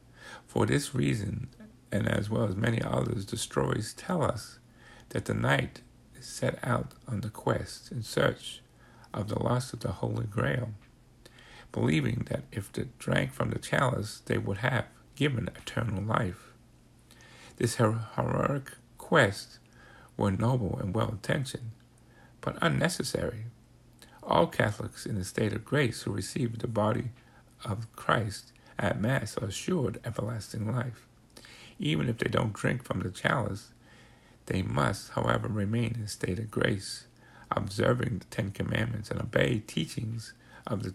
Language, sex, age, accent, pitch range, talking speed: English, male, 50-69, American, 110-120 Hz, 145 wpm